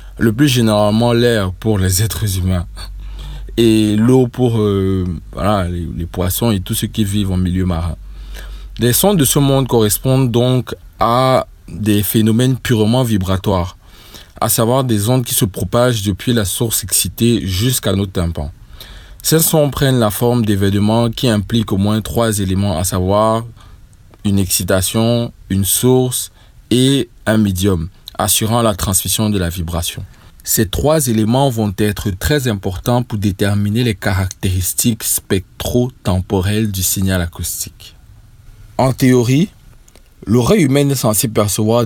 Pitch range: 95-120 Hz